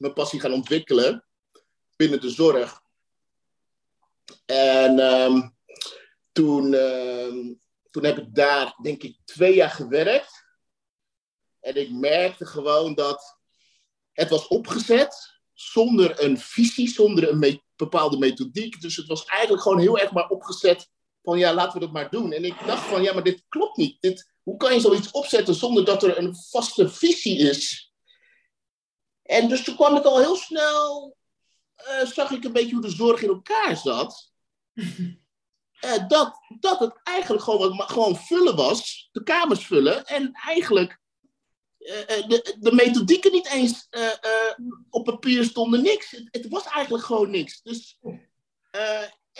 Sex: male